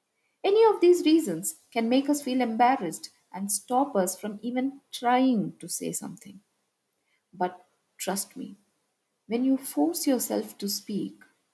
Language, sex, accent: English, female, Indian